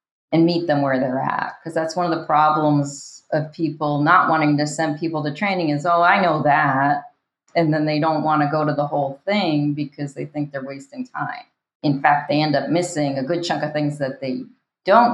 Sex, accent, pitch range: female, American, 150-185 Hz